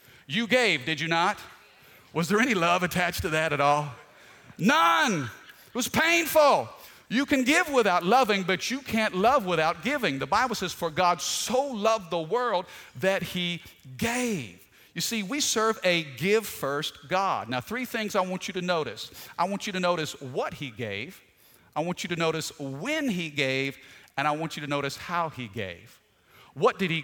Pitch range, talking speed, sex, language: 140-190 Hz, 185 wpm, male, English